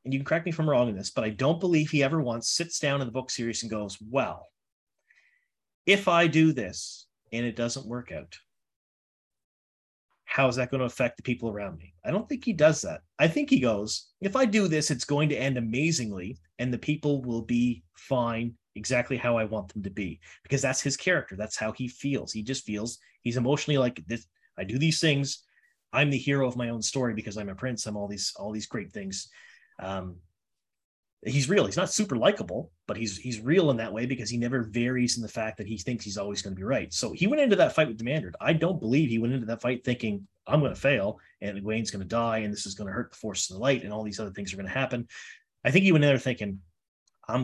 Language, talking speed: English, 250 wpm